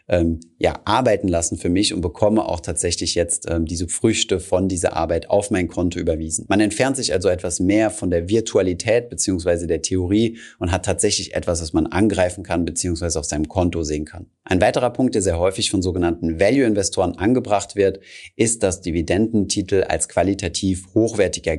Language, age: German, 30-49